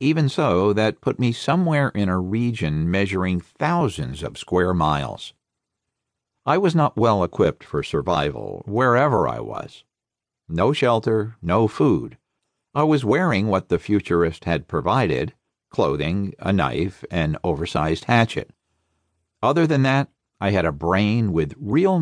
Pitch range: 95-135 Hz